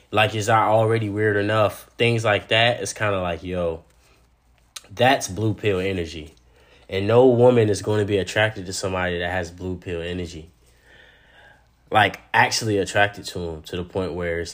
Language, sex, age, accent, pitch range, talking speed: English, male, 20-39, American, 85-115 Hz, 180 wpm